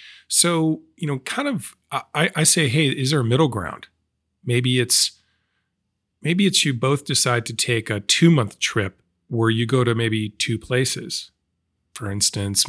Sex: male